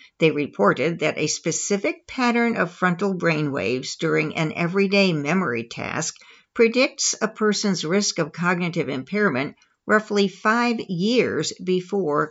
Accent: American